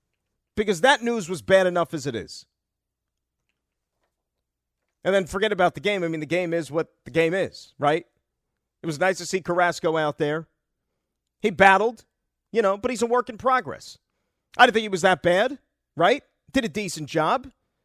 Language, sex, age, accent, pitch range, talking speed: English, male, 40-59, American, 145-195 Hz, 185 wpm